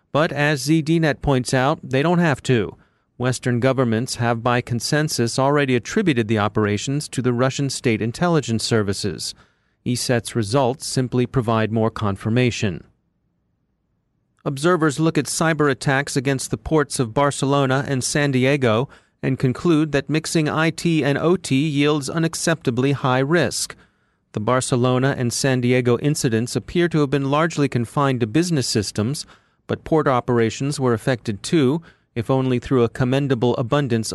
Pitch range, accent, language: 115-145 Hz, American, English